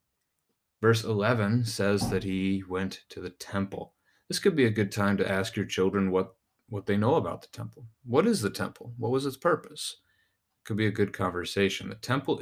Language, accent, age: English, American, 30-49